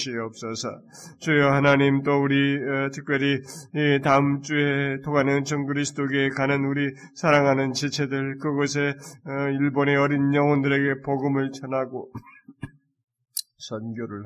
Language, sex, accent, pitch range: Korean, male, native, 135-160 Hz